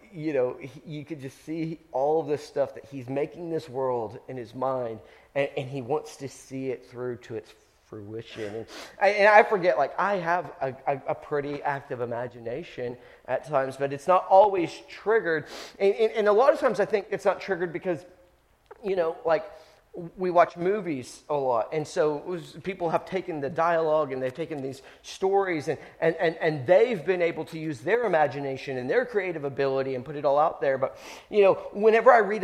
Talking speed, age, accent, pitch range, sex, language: 200 wpm, 30-49, American, 135-175 Hz, male, English